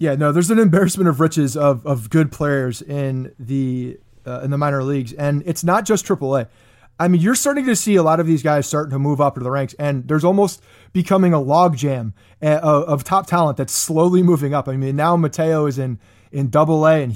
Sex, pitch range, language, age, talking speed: male, 140-175 Hz, English, 30-49, 225 wpm